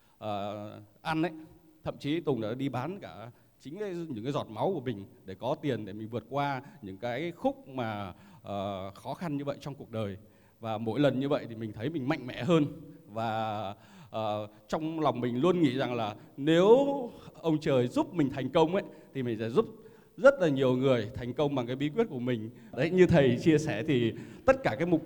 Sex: male